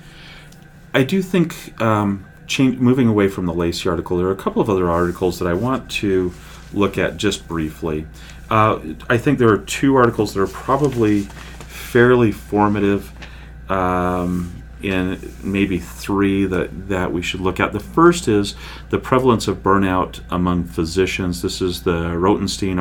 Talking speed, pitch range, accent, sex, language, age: 160 wpm, 85-110 Hz, American, male, English, 40-59